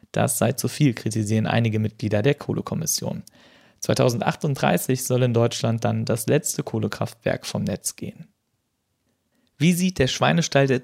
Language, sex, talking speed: German, male, 140 wpm